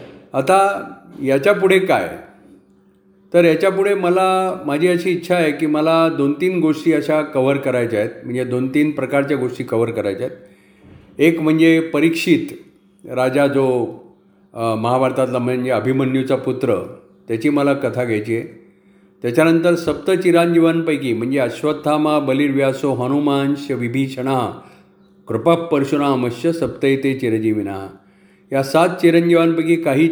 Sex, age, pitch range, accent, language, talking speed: male, 50-69, 125-165 Hz, native, Marathi, 95 wpm